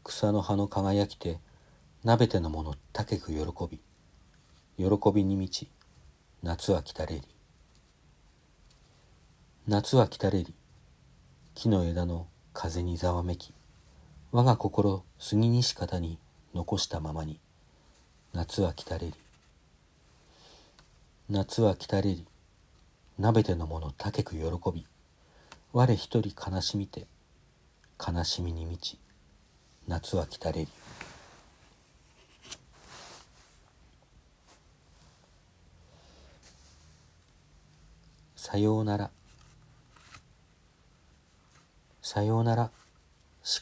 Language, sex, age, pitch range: Japanese, male, 50-69, 75-105 Hz